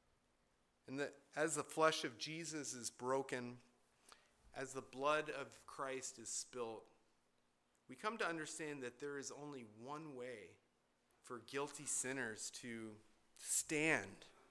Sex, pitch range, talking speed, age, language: male, 120-170 Hz, 130 wpm, 40-59, English